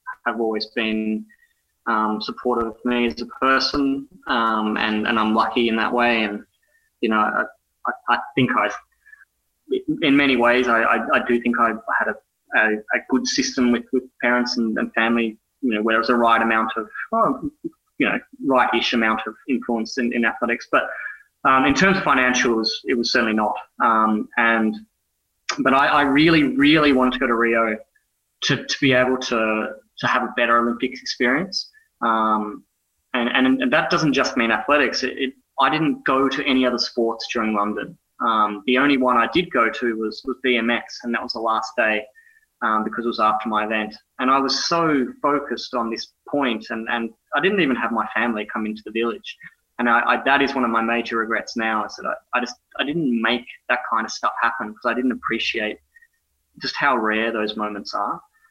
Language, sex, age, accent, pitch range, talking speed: English, male, 20-39, Australian, 110-135 Hz, 205 wpm